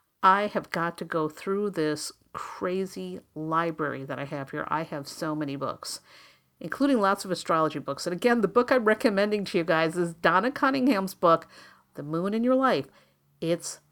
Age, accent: 50-69, American